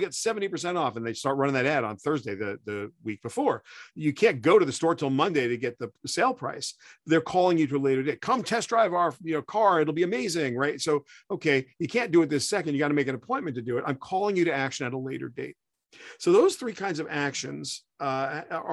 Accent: American